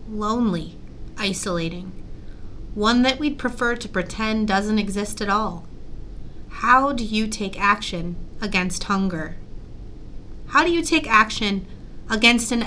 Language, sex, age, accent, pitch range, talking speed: English, female, 30-49, American, 180-225 Hz, 125 wpm